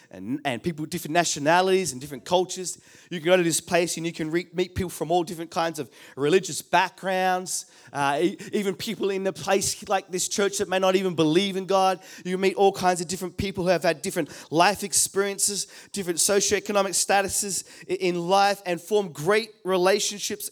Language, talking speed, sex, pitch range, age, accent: English, 195 wpm, male, 185-230 Hz, 20-39, Australian